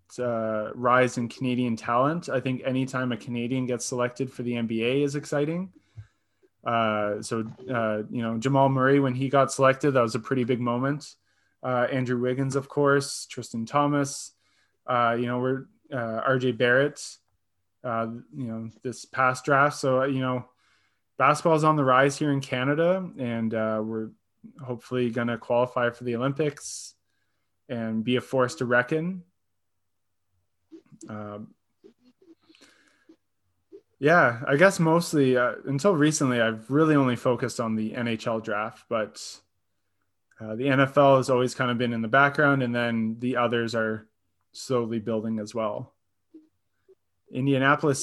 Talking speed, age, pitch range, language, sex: 150 wpm, 20-39, 115-140 Hz, English, male